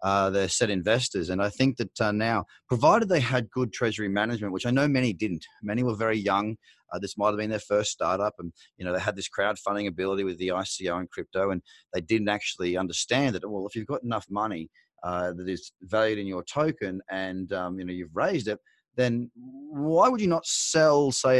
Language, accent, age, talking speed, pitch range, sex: English, Australian, 30-49, 220 wpm, 95-130 Hz, male